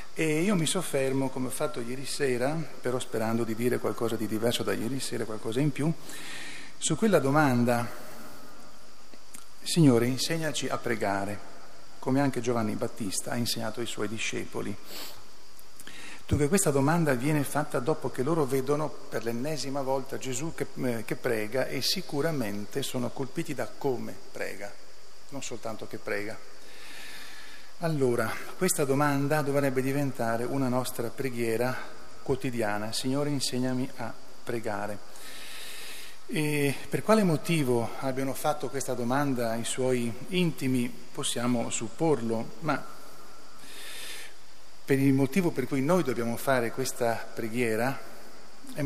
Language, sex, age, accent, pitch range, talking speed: Italian, male, 40-59, native, 120-145 Hz, 125 wpm